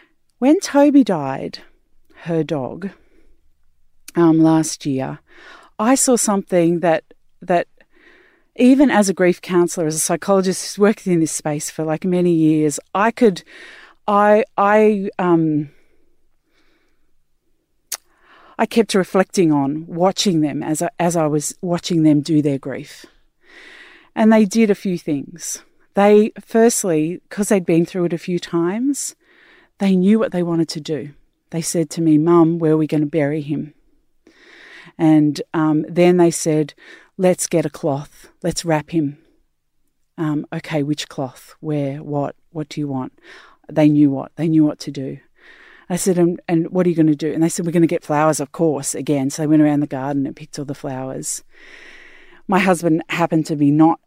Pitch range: 155-210 Hz